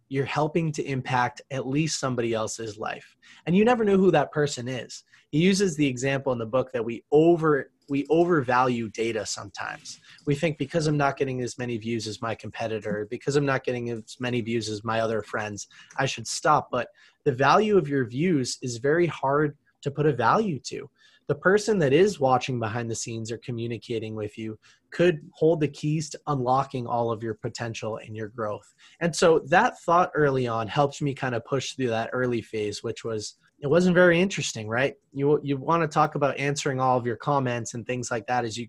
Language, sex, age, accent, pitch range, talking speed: English, male, 20-39, American, 115-150 Hz, 210 wpm